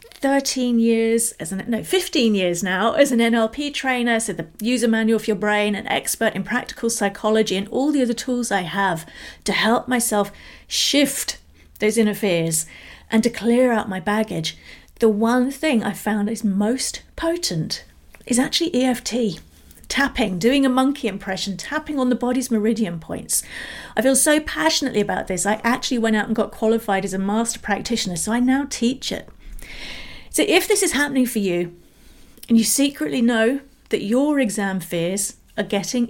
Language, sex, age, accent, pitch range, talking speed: English, female, 40-59, British, 205-255 Hz, 175 wpm